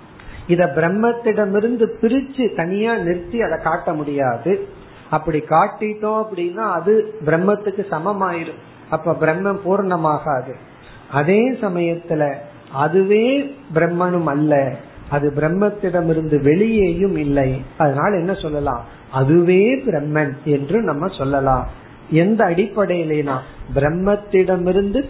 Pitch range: 145-200 Hz